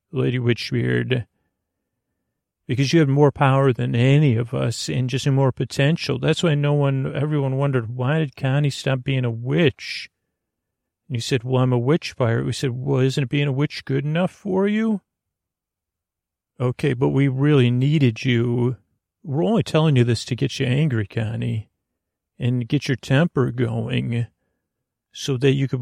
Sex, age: male, 40-59